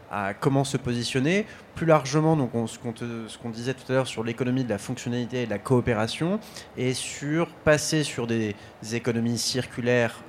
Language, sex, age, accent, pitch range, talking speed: French, male, 20-39, French, 110-135 Hz, 200 wpm